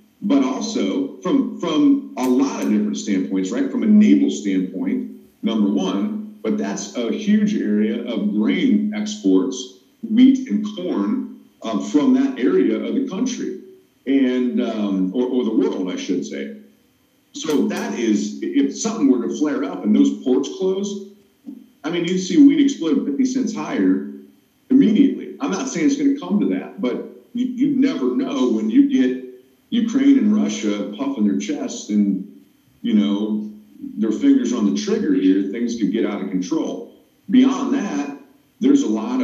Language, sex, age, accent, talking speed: English, male, 50-69, American, 165 wpm